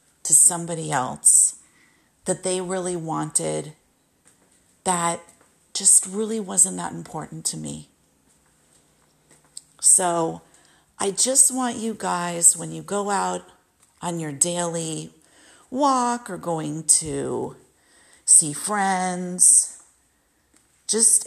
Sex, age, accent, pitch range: female, 40-59, American, 165-215 Hz